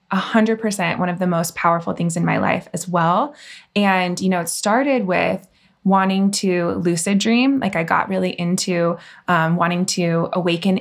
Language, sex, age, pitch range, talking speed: English, female, 20-39, 175-210 Hz, 185 wpm